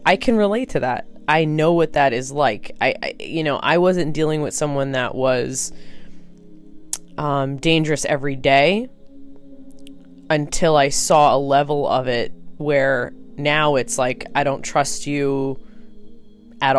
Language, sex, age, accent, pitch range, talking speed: English, female, 20-39, American, 130-155 Hz, 150 wpm